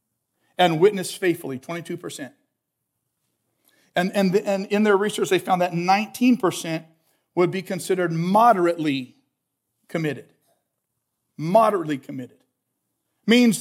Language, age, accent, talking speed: English, 50-69, American, 95 wpm